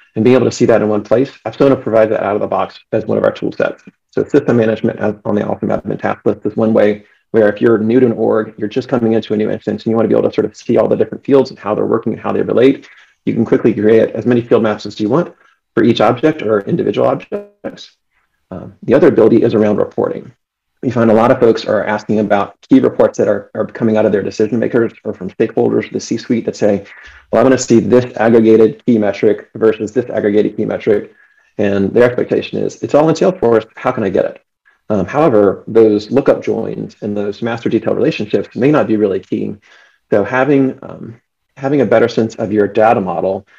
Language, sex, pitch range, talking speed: English, male, 105-125 Hz, 245 wpm